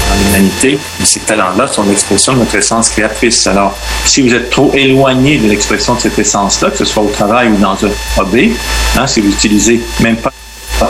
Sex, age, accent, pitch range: male, 50-69, French, 100-120 Hz